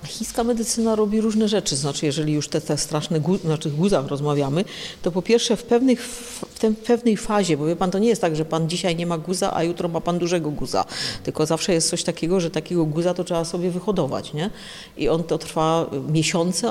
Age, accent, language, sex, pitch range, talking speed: 50-69, native, Polish, female, 165-200 Hz, 225 wpm